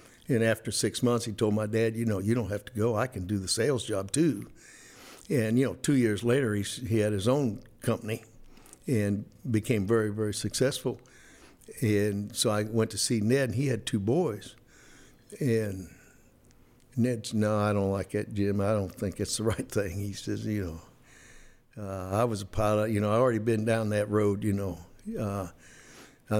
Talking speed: 200 wpm